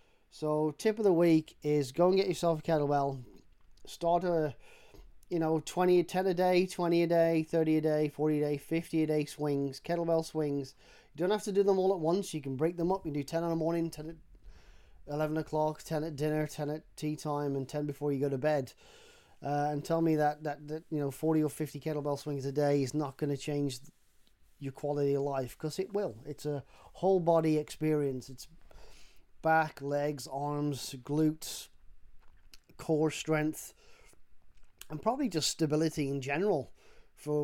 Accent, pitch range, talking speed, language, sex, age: British, 140-165 Hz, 195 wpm, English, male, 30-49